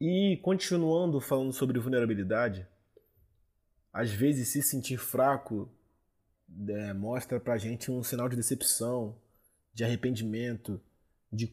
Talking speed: 110 wpm